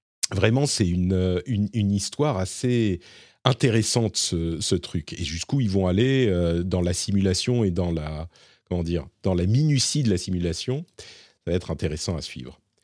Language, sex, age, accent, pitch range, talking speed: French, male, 40-59, French, 95-130 Hz, 170 wpm